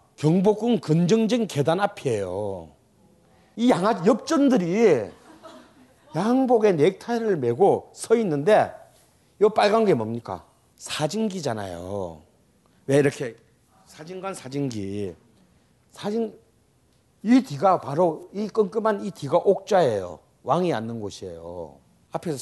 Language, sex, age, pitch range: Korean, male, 40-59, 140-220 Hz